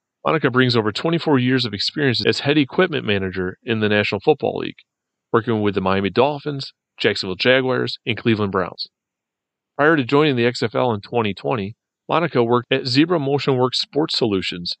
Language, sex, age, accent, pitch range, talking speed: English, male, 40-59, American, 105-135 Hz, 165 wpm